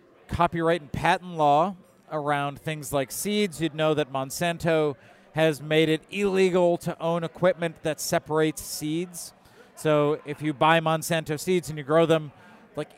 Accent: American